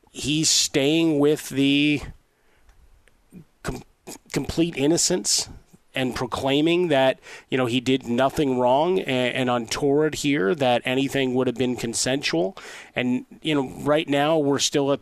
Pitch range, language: 125-145 Hz, English